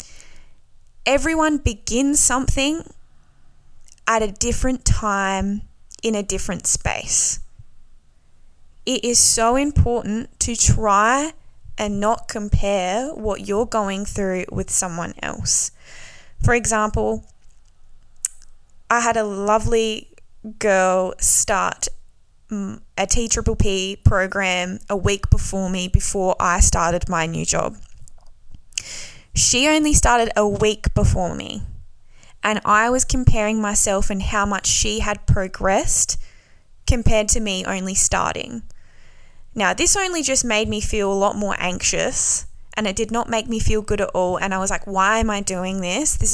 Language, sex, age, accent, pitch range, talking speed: English, female, 10-29, Australian, 180-220 Hz, 130 wpm